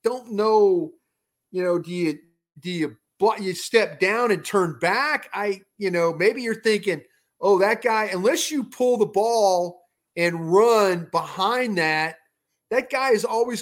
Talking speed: 160 wpm